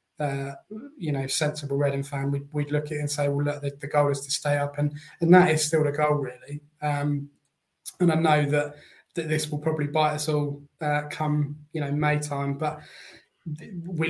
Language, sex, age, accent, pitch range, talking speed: English, male, 20-39, British, 130-145 Hz, 215 wpm